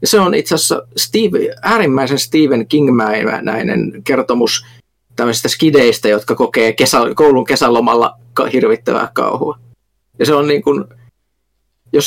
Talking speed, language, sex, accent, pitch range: 125 wpm, Finnish, male, native, 115-155 Hz